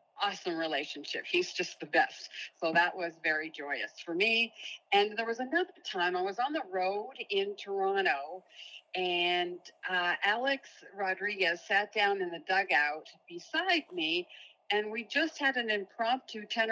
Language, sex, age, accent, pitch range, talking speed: English, female, 50-69, American, 185-285 Hz, 155 wpm